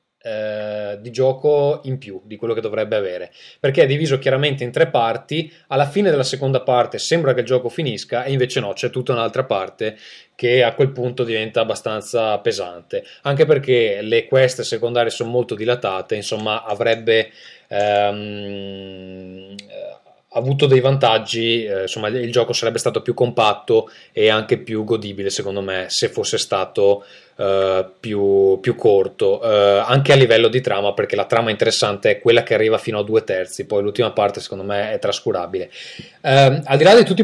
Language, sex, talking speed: Italian, male, 170 wpm